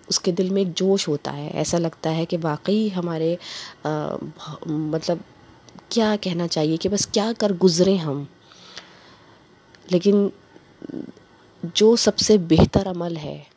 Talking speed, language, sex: 135 wpm, Urdu, female